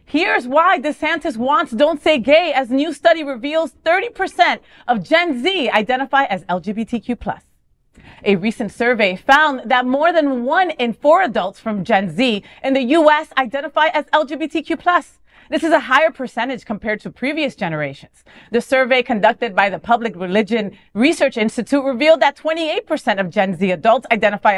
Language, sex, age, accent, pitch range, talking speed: English, female, 30-49, American, 215-305 Hz, 160 wpm